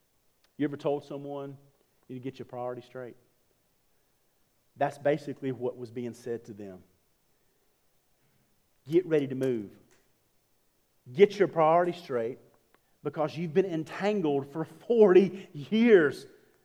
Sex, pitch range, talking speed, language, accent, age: male, 115-150 Hz, 125 wpm, English, American, 40-59